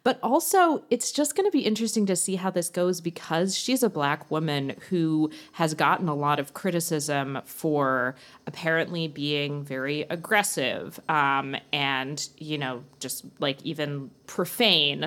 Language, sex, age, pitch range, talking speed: English, female, 30-49, 145-200 Hz, 150 wpm